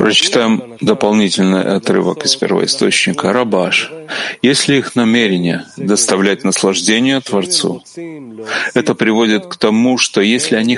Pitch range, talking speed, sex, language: 105-135 Hz, 105 wpm, male, Russian